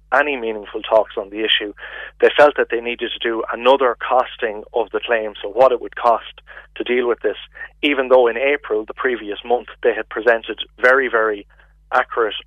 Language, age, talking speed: English, 30-49, 190 wpm